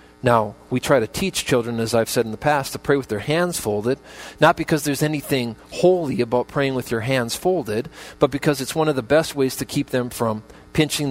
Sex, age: male, 40-59